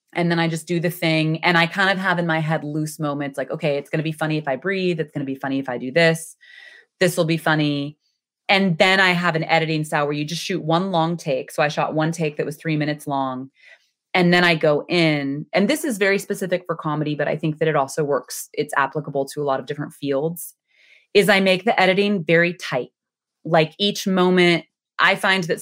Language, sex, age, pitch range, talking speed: English, female, 20-39, 150-180 Hz, 245 wpm